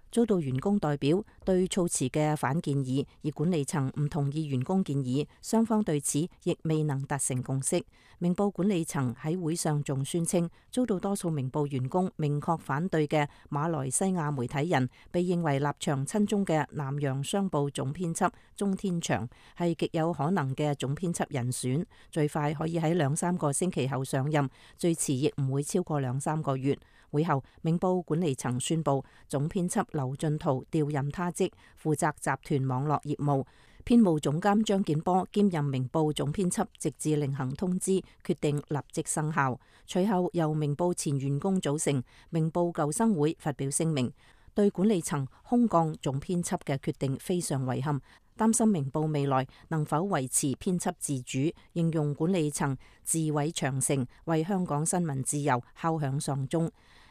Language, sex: English, female